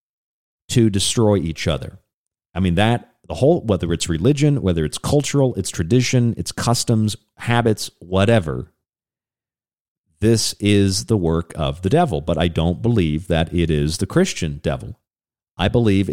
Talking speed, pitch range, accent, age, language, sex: 150 wpm, 85-120 Hz, American, 40-59, English, male